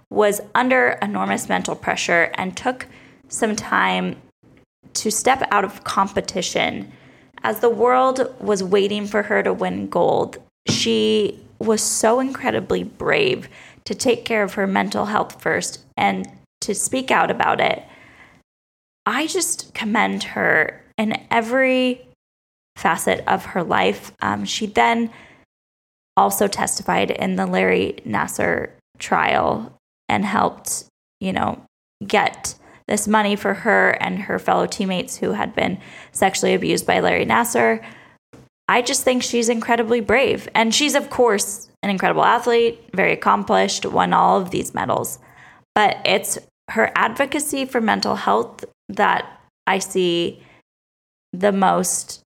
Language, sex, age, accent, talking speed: English, female, 20-39, American, 135 wpm